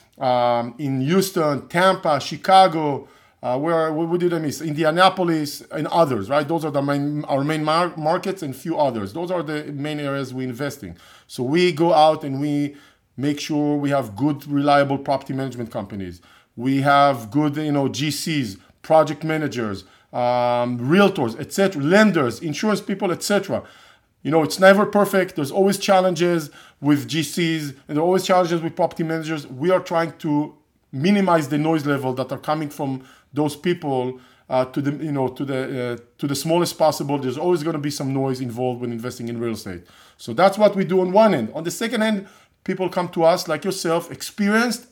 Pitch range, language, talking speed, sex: 140-180 Hz, English, 180 wpm, male